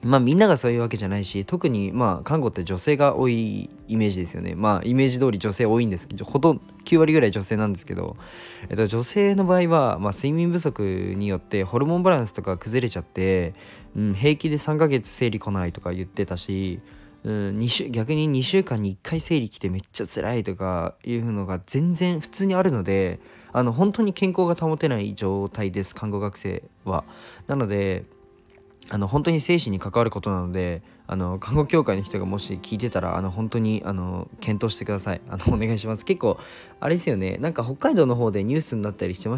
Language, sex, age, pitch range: Japanese, male, 20-39, 100-135 Hz